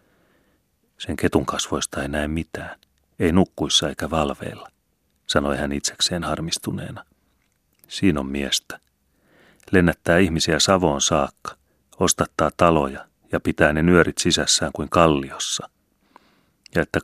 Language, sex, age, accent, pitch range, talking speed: Finnish, male, 30-49, native, 70-85 Hz, 115 wpm